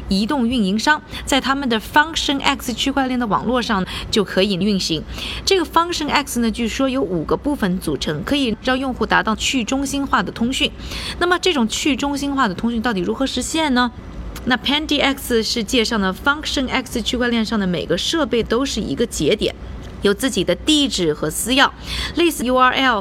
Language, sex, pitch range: Chinese, female, 190-270 Hz